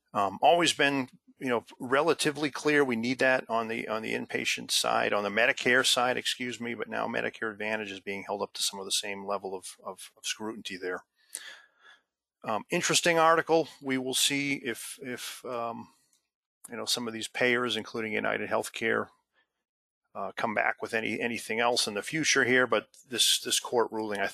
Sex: male